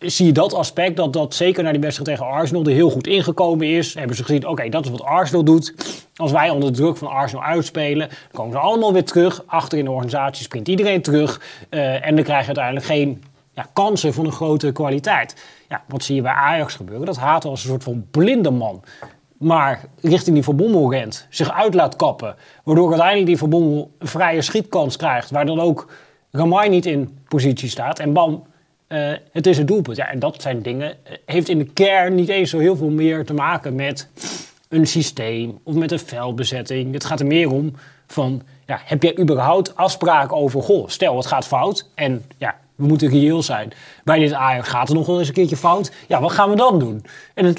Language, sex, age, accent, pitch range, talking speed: Dutch, male, 30-49, Dutch, 140-175 Hz, 220 wpm